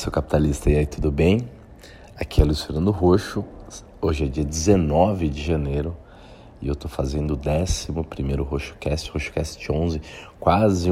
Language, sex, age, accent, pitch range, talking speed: Portuguese, male, 40-59, Brazilian, 70-85 Hz, 160 wpm